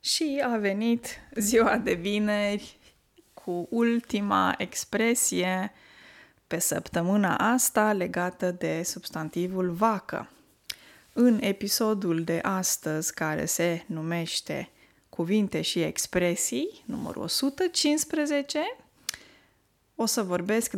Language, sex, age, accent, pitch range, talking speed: Romanian, female, 20-39, native, 180-235 Hz, 90 wpm